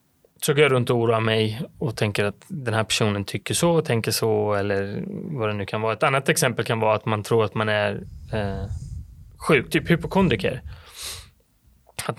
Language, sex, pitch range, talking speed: Swedish, male, 110-145 Hz, 195 wpm